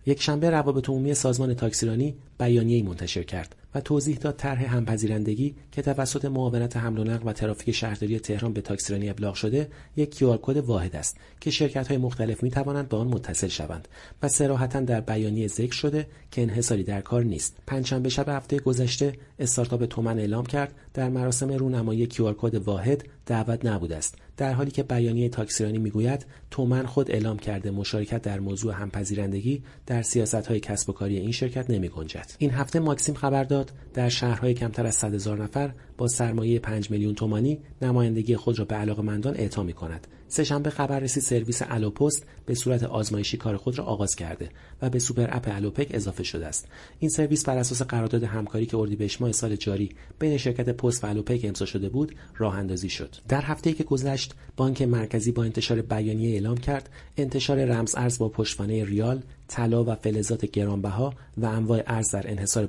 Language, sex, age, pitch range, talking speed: Persian, male, 40-59, 105-135 Hz, 170 wpm